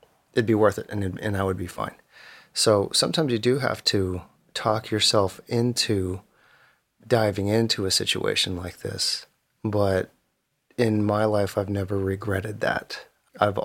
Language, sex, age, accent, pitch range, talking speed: English, male, 30-49, American, 100-115 Hz, 155 wpm